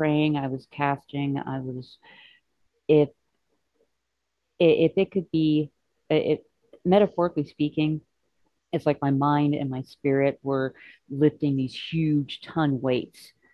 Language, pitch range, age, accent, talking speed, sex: English, 130-150 Hz, 40-59, American, 130 wpm, female